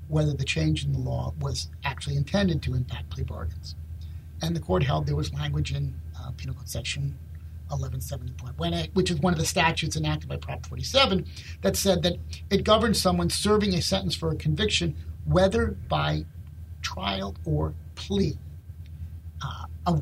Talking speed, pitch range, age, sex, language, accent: 165 wpm, 80-120 Hz, 50-69, male, English, American